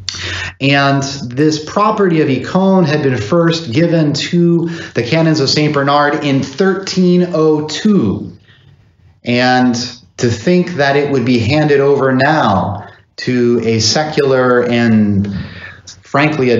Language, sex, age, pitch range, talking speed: English, male, 30-49, 110-150 Hz, 120 wpm